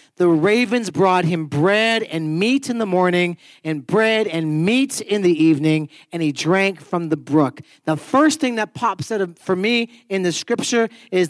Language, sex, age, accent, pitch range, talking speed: English, male, 40-59, American, 175-245 Hz, 185 wpm